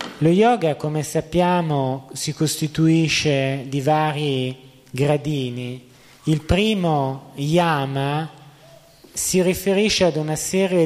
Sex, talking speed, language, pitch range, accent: male, 95 wpm, Italian, 130-160 Hz, native